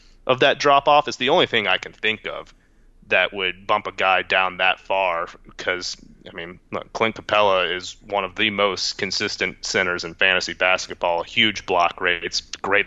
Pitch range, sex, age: 90-110 Hz, male, 30-49